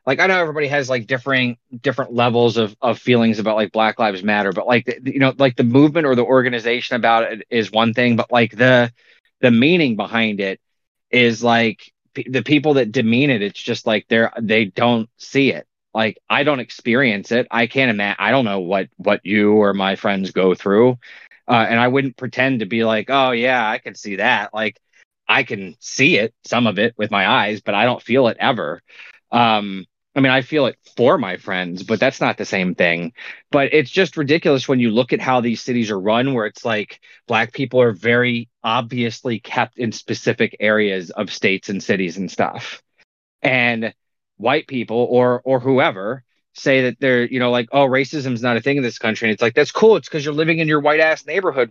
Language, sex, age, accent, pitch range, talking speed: English, male, 30-49, American, 110-135 Hz, 215 wpm